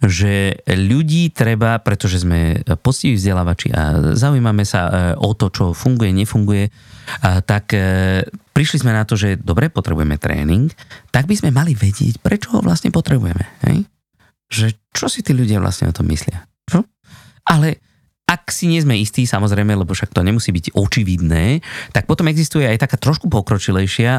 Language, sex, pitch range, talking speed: Slovak, male, 100-135 Hz, 160 wpm